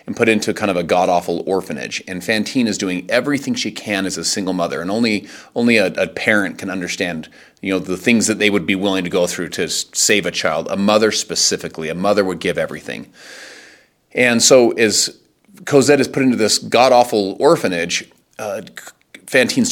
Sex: male